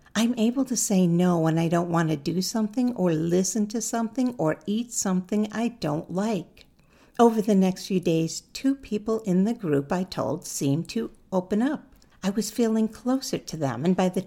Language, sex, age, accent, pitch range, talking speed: English, female, 60-79, American, 175-235 Hz, 200 wpm